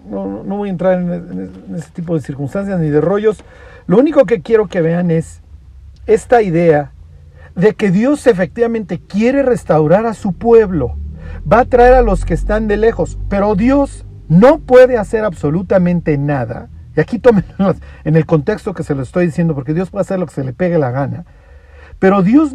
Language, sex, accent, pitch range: Spanish, male, Mexican, 140-205 Hz